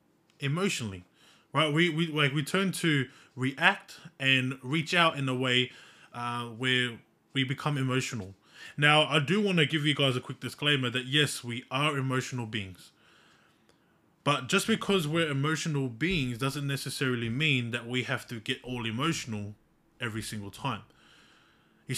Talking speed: 155 wpm